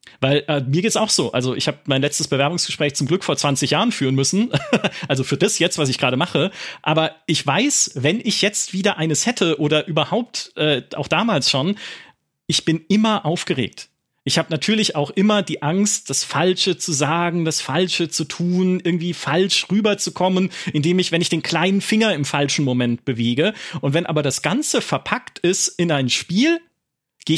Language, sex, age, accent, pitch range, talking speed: German, male, 30-49, German, 140-185 Hz, 190 wpm